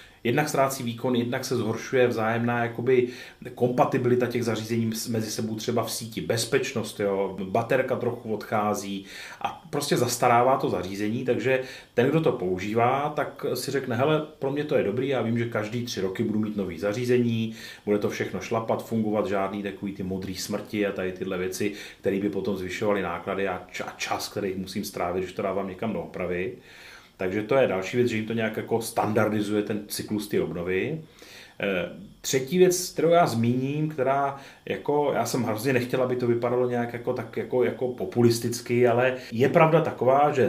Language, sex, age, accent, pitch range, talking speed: Czech, male, 30-49, native, 105-125 Hz, 180 wpm